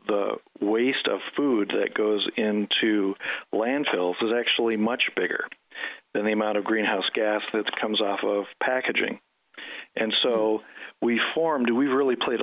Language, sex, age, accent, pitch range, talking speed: English, male, 50-69, American, 105-115 Hz, 145 wpm